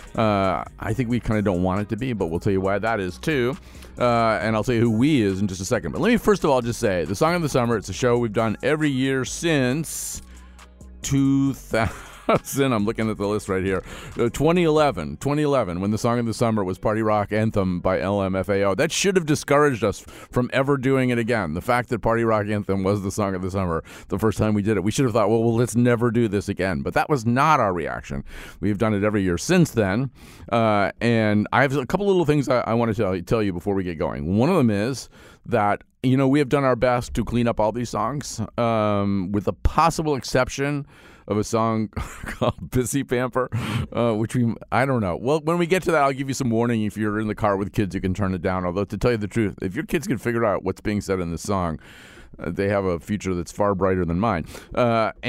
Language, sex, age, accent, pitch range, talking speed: English, male, 40-59, American, 100-125 Hz, 250 wpm